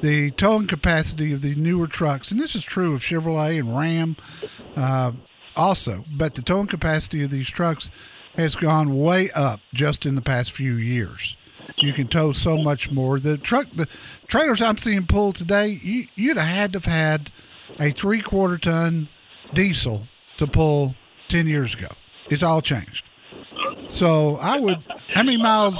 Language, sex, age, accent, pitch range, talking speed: English, male, 50-69, American, 135-175 Hz, 170 wpm